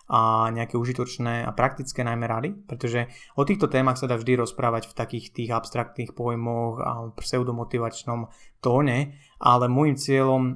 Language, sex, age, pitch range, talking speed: Slovak, male, 20-39, 120-135 Hz, 150 wpm